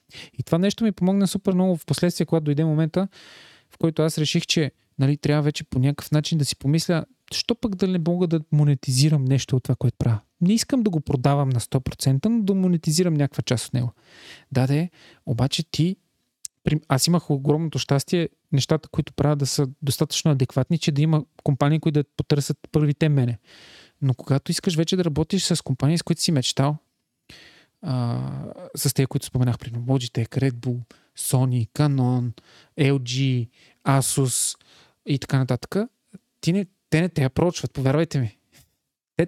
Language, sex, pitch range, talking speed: Bulgarian, male, 135-170 Hz, 170 wpm